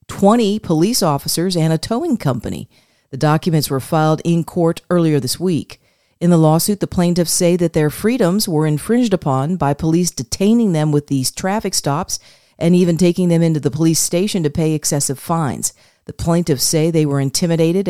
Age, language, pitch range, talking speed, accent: 40-59, English, 155-195 Hz, 180 wpm, American